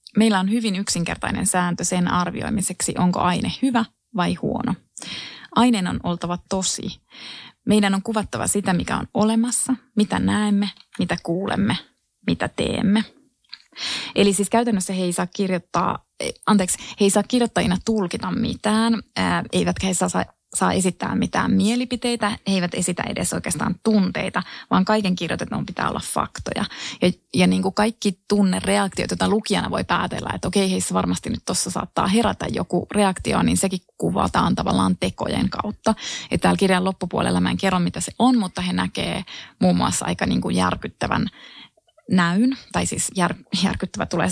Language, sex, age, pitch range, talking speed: Finnish, female, 20-39, 180-220 Hz, 155 wpm